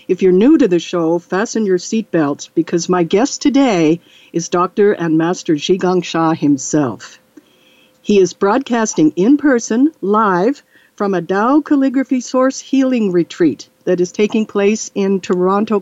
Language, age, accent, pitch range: English, 60-79, American, 190-265 Hz